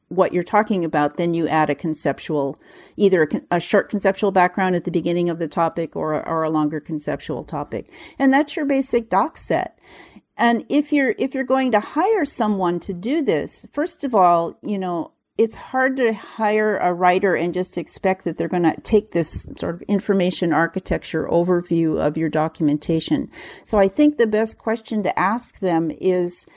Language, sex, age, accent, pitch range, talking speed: English, female, 50-69, American, 165-225 Hz, 185 wpm